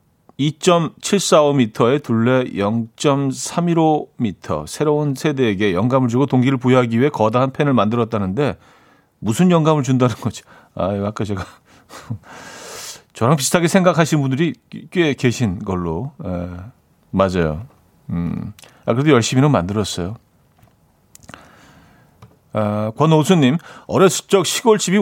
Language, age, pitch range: Korean, 40-59, 110-145 Hz